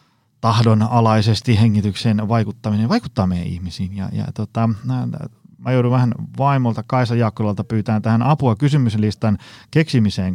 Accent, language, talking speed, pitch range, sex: native, Finnish, 115 wpm, 100-125 Hz, male